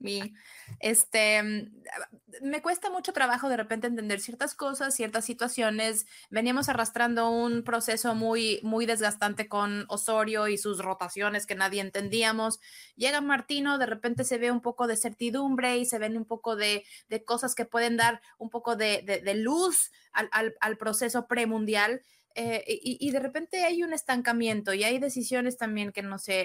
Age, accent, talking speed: 20-39, Mexican, 170 wpm